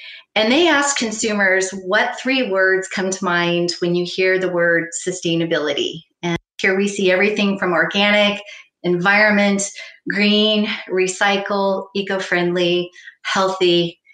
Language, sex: English, female